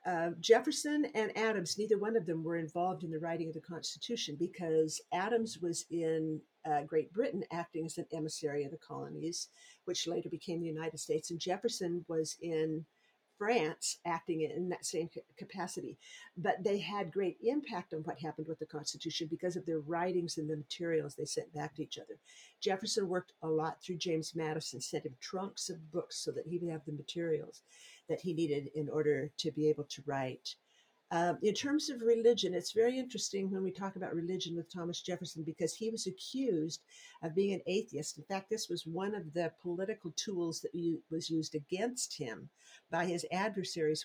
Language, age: English, 50-69